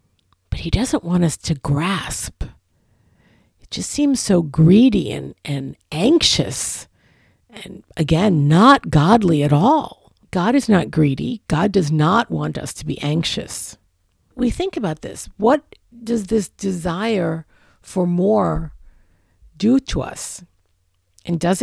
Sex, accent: female, American